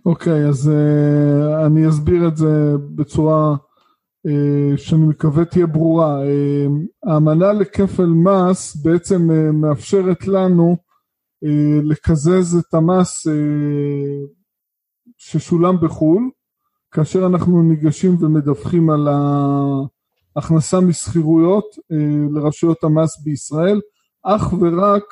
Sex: male